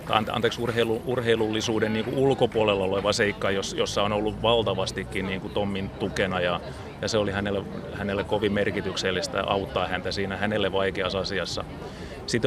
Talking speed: 150 wpm